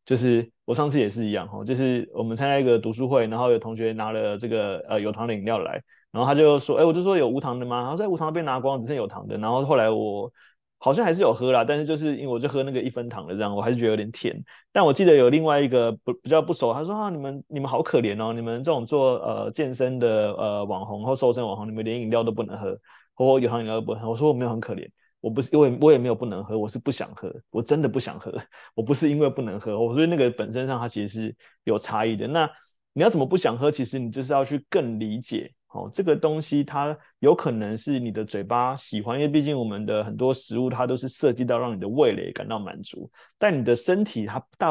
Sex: male